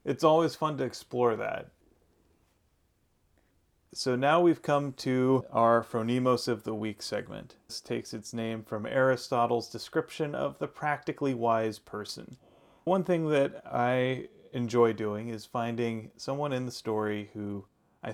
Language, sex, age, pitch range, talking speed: English, male, 30-49, 105-130 Hz, 140 wpm